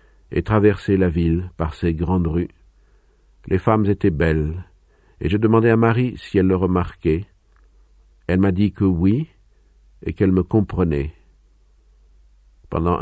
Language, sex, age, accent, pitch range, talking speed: French, male, 50-69, French, 80-105 Hz, 145 wpm